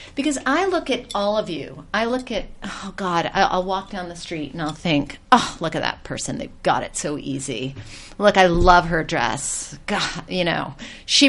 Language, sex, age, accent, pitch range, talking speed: English, female, 40-59, American, 170-235 Hz, 205 wpm